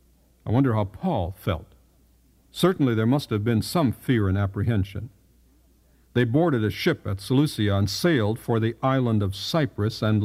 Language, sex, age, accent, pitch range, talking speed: English, male, 60-79, American, 95-130 Hz, 165 wpm